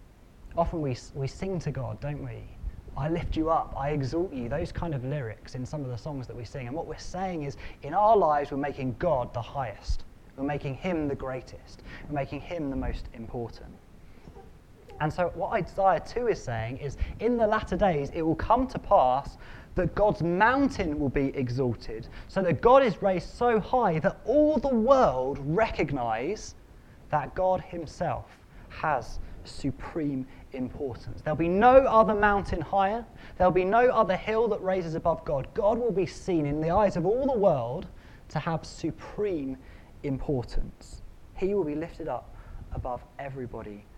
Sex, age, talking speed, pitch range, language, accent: male, 20-39, 175 wpm, 115-170 Hz, English, British